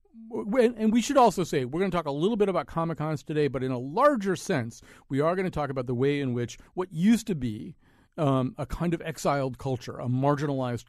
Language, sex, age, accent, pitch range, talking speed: English, male, 40-59, American, 120-165 Hz, 235 wpm